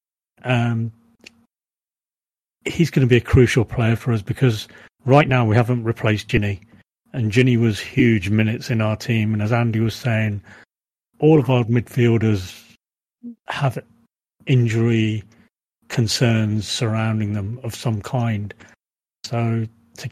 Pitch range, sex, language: 110-130 Hz, male, English